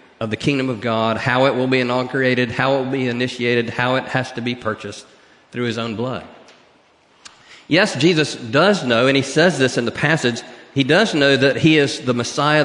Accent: American